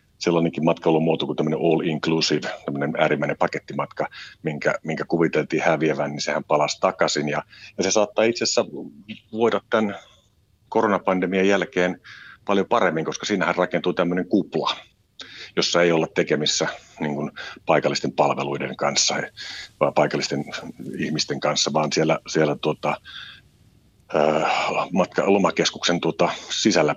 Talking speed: 120 wpm